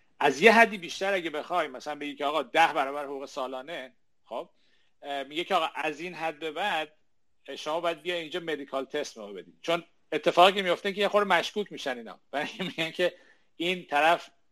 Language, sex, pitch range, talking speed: Persian, male, 135-170 Hz, 180 wpm